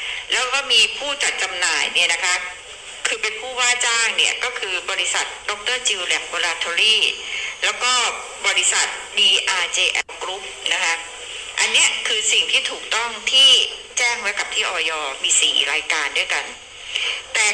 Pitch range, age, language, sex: 210-290 Hz, 60-79, Thai, female